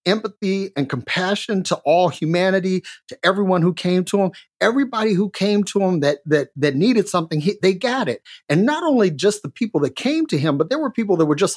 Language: English